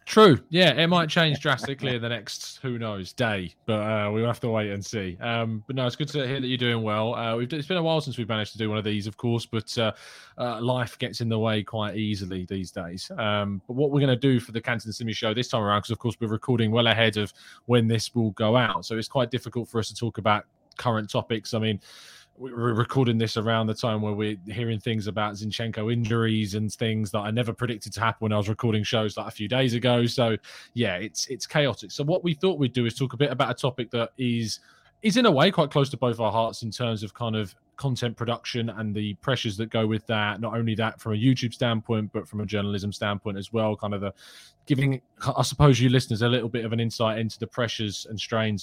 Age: 20-39